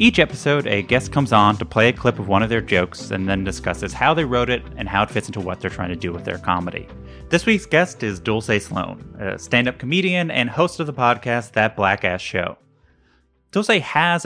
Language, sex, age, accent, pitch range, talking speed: English, male, 30-49, American, 95-130 Hz, 230 wpm